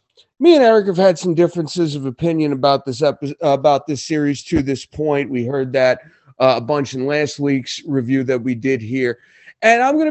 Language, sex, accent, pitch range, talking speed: English, male, American, 140-180 Hz, 210 wpm